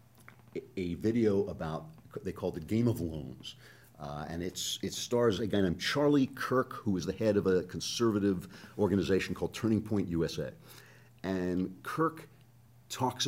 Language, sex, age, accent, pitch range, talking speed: English, male, 50-69, American, 90-120 Hz, 160 wpm